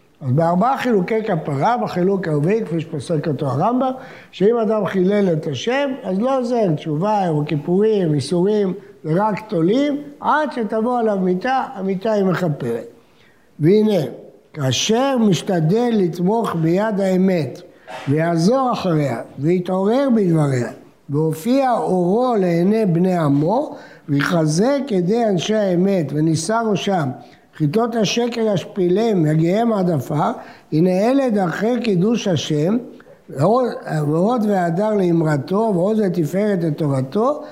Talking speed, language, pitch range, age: 110 wpm, Hebrew, 160-225 Hz, 60-79